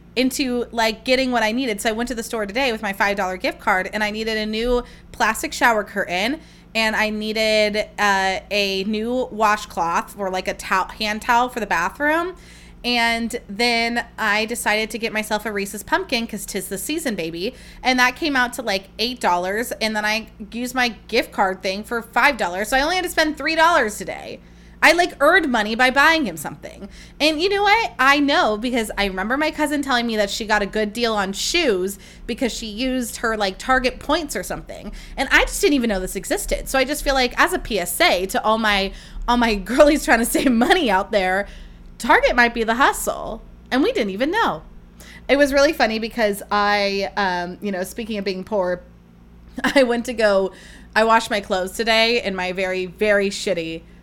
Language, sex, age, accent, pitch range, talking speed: English, female, 20-39, American, 200-260 Hz, 205 wpm